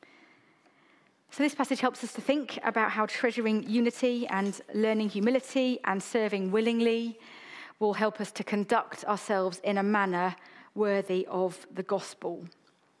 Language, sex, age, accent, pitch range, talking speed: English, female, 30-49, British, 205-255 Hz, 140 wpm